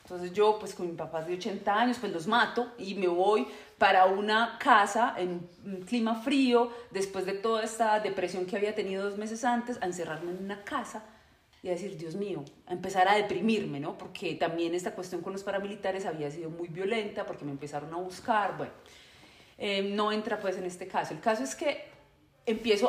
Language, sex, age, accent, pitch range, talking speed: Spanish, female, 30-49, Colombian, 185-230 Hz, 200 wpm